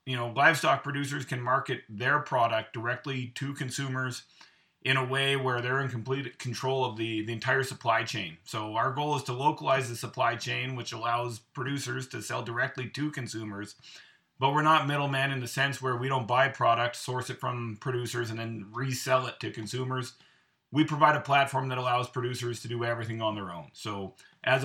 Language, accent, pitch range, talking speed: English, American, 120-140 Hz, 190 wpm